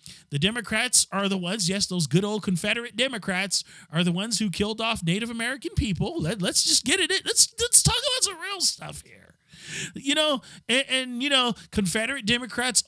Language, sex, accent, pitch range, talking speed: English, male, American, 180-260 Hz, 195 wpm